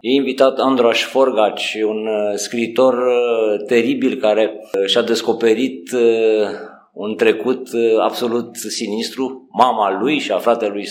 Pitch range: 110-130 Hz